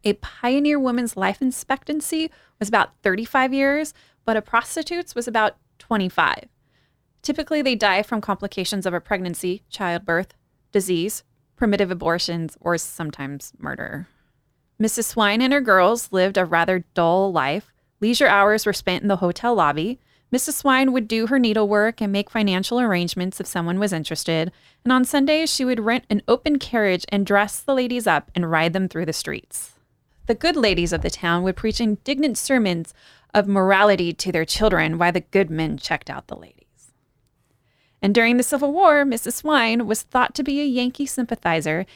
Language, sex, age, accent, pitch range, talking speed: English, female, 20-39, American, 185-255 Hz, 170 wpm